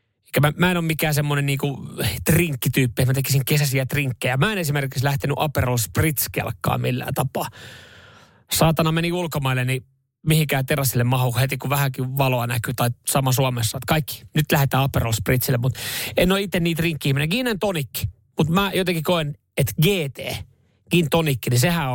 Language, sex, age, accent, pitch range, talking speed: Finnish, male, 30-49, native, 125-155 Hz, 160 wpm